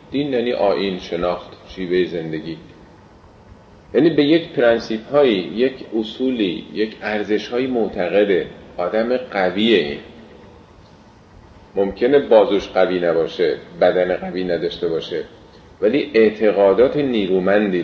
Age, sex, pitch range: 40-59, male, 95-130 Hz